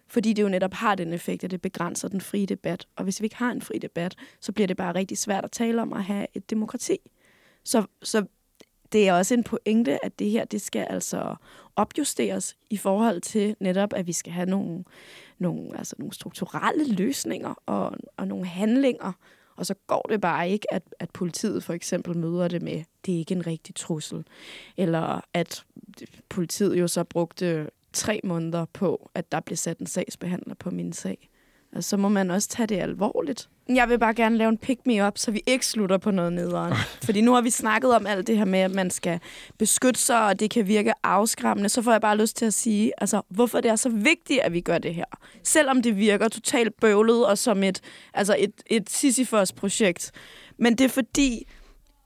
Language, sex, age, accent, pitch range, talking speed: Danish, female, 20-39, native, 180-230 Hz, 210 wpm